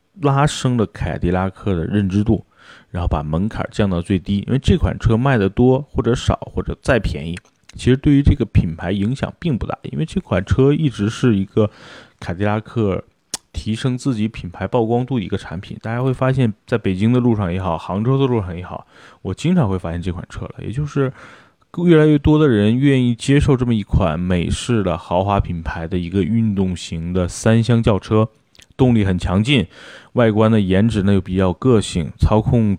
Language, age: Chinese, 30-49